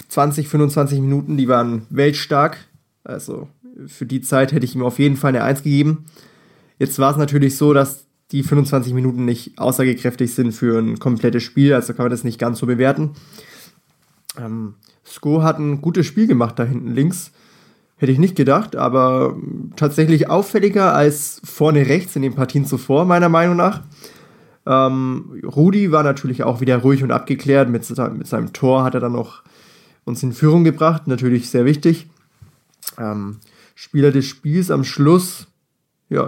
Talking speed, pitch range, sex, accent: 165 wpm, 130-155 Hz, male, German